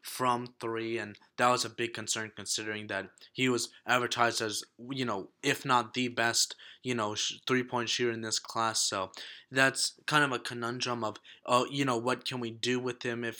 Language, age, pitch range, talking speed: English, 20-39, 110-125 Hz, 195 wpm